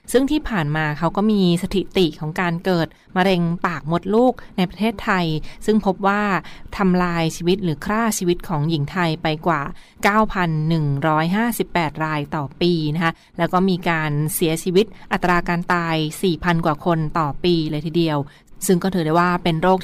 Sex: female